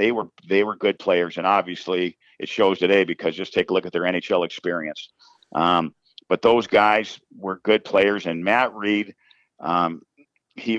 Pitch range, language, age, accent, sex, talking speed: 90-110 Hz, English, 50-69, American, male, 180 wpm